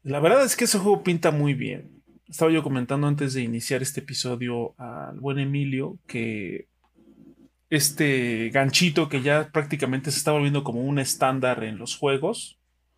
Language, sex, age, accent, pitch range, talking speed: Spanish, male, 30-49, Mexican, 125-155 Hz, 160 wpm